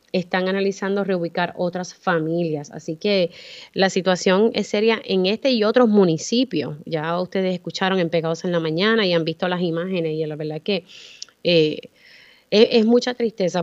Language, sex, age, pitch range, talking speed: Spanish, female, 30-49, 175-210 Hz, 165 wpm